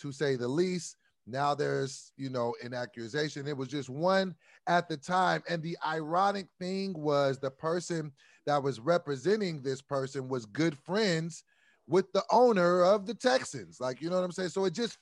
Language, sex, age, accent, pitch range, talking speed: English, male, 30-49, American, 150-195 Hz, 190 wpm